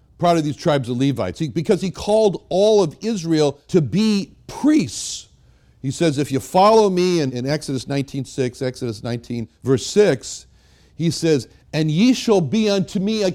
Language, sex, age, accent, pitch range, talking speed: English, male, 60-79, American, 130-195 Hz, 175 wpm